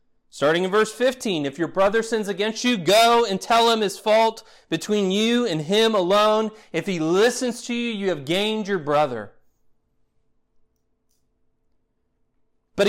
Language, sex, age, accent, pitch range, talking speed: English, male, 30-49, American, 145-220 Hz, 150 wpm